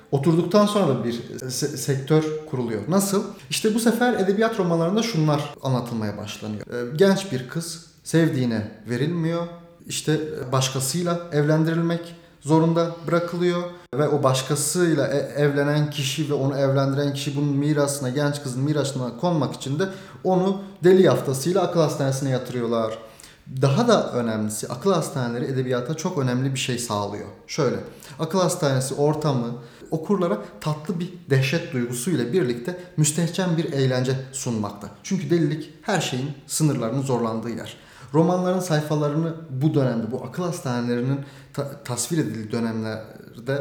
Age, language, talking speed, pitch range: 30-49, Turkish, 125 wpm, 130-165 Hz